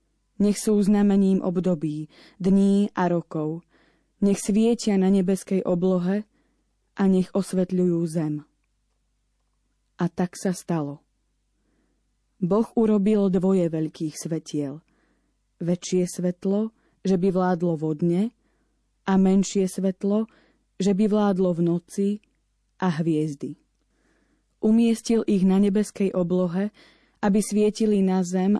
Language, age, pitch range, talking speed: Slovak, 20-39, 170-200 Hz, 105 wpm